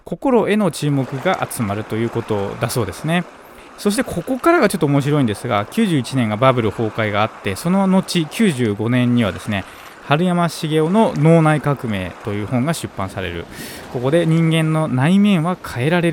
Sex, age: male, 20-39